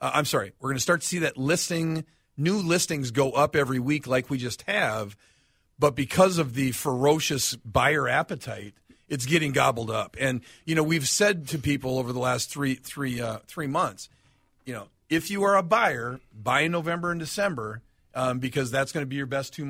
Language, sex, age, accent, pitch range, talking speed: English, male, 40-59, American, 125-160 Hz, 200 wpm